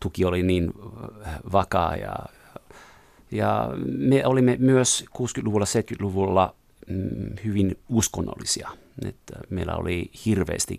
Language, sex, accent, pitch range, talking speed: Finnish, male, native, 85-110 Hz, 95 wpm